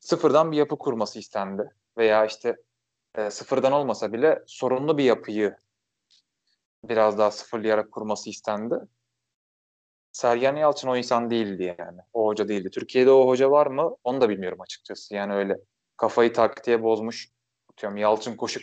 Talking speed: 145 wpm